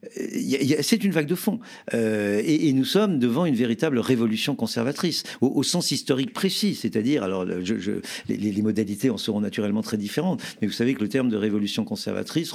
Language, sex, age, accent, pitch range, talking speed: French, male, 50-69, French, 105-150 Hz, 180 wpm